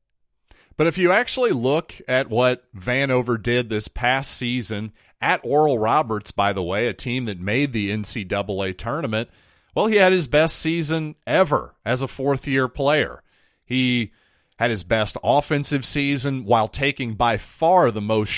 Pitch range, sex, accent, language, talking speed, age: 110-140 Hz, male, American, English, 155 wpm, 40-59